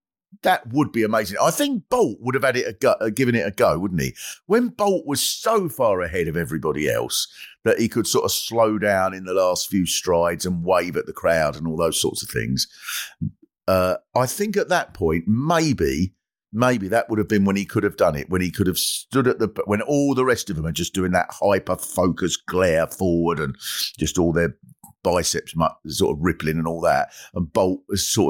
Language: English